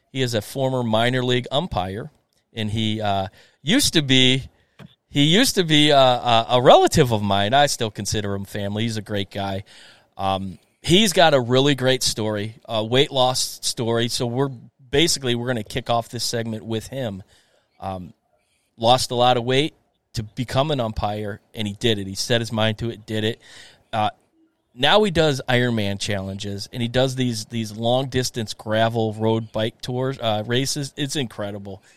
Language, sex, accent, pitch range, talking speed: English, male, American, 110-135 Hz, 190 wpm